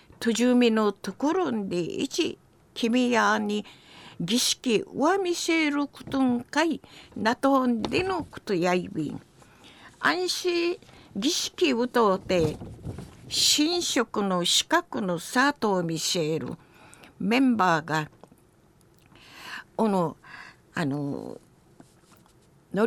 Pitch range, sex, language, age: 200-300 Hz, female, Japanese, 50-69